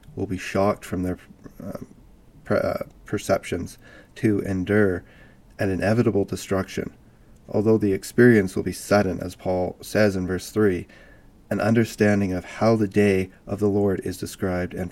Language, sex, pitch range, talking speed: English, male, 95-110 Hz, 150 wpm